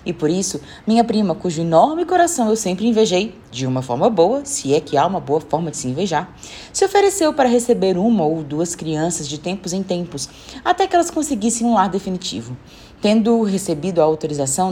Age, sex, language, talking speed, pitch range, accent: 20-39, female, Portuguese, 195 wpm, 165-265 Hz, Brazilian